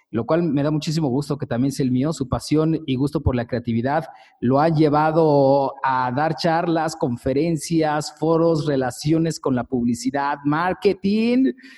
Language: Spanish